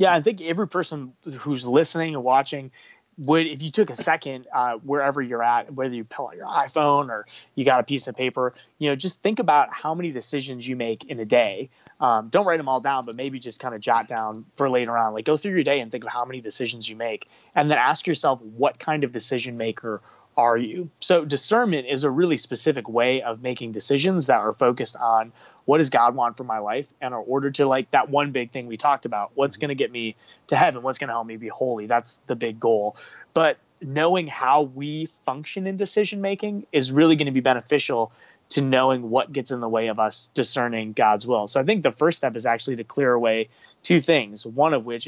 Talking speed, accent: 235 wpm, American